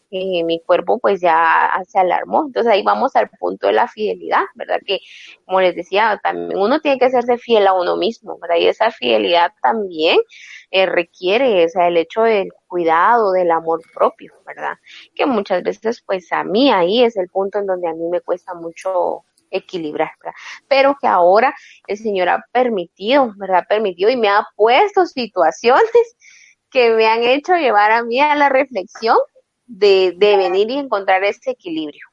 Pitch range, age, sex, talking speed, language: 190-255 Hz, 20-39, female, 180 wpm, Spanish